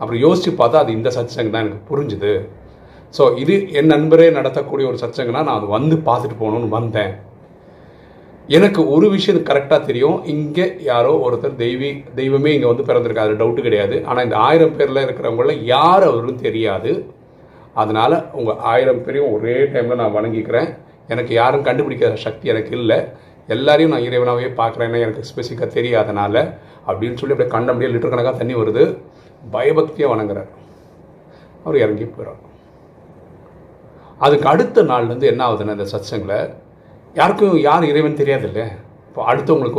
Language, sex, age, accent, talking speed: Tamil, male, 40-59, native, 140 wpm